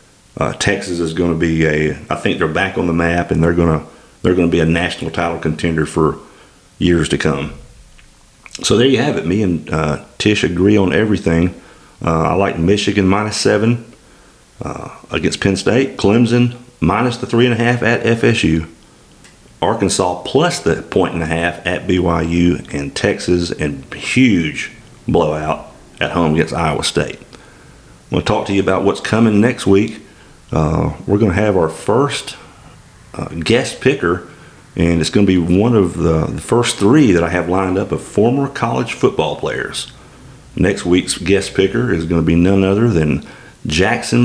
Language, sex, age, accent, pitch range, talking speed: English, male, 40-59, American, 80-105 Hz, 175 wpm